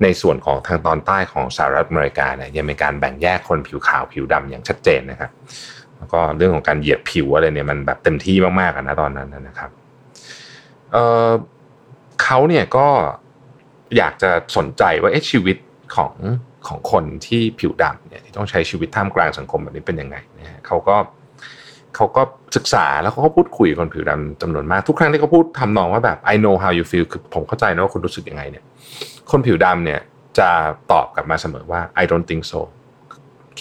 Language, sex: Thai, male